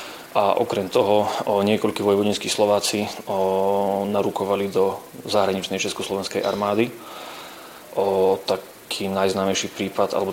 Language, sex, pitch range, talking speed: Slovak, male, 95-100 Hz, 85 wpm